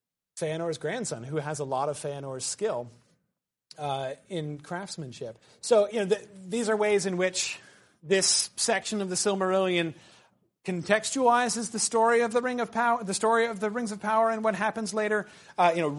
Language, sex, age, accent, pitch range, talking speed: English, male, 30-49, American, 145-195 Hz, 180 wpm